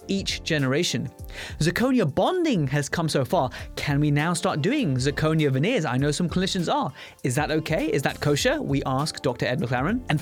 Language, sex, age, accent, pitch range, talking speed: English, male, 20-39, British, 140-180 Hz, 190 wpm